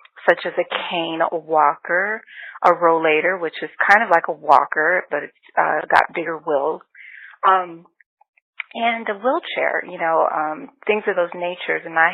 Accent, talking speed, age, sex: American, 170 wpm, 30-49, female